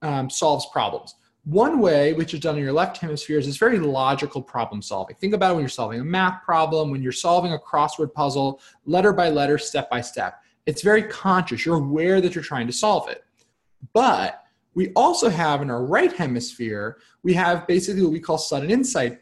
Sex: male